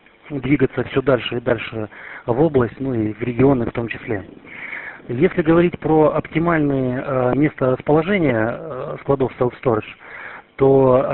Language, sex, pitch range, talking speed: Russian, male, 120-140 Hz, 125 wpm